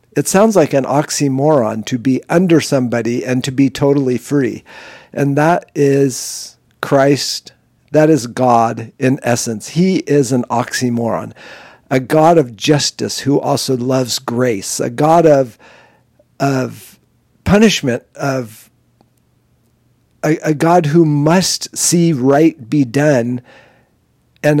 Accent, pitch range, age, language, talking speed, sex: American, 125-150 Hz, 50-69, English, 125 wpm, male